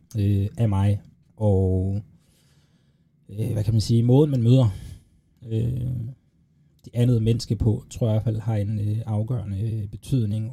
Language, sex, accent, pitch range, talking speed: Danish, male, native, 100-120 Hz, 135 wpm